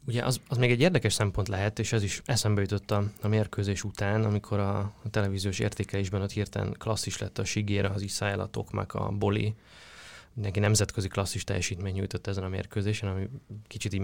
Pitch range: 95-110 Hz